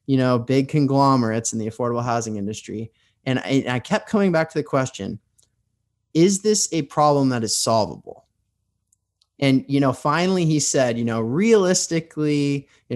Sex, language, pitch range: male, English, 110-140 Hz